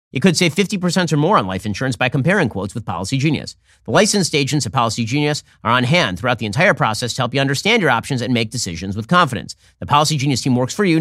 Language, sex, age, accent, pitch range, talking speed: English, male, 40-59, American, 115-155 Hz, 250 wpm